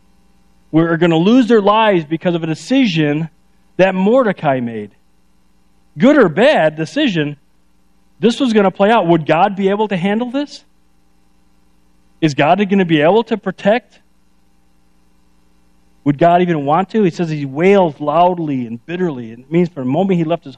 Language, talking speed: English, 170 wpm